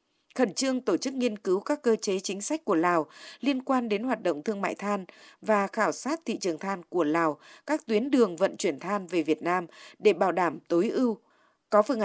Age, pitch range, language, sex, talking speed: 20-39, 190-260 Hz, Vietnamese, female, 225 wpm